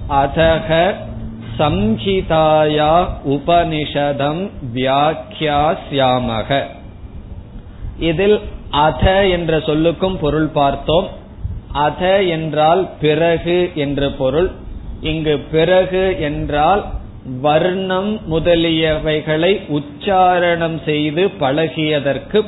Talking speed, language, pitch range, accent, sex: 55 wpm, Tamil, 140-175 Hz, native, male